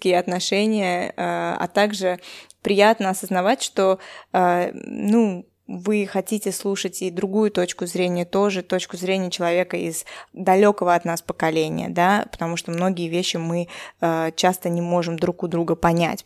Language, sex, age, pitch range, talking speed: Russian, female, 20-39, 180-220 Hz, 135 wpm